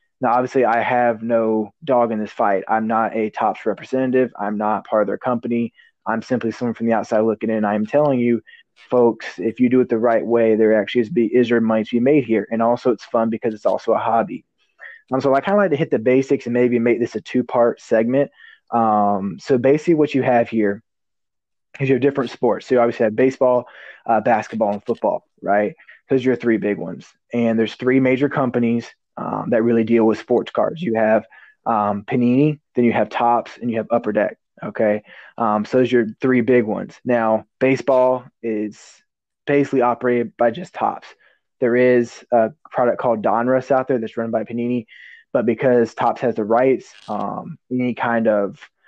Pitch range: 110-125 Hz